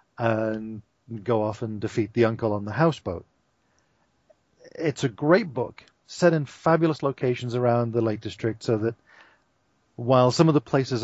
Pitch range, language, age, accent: 110-135 Hz, English, 40-59, British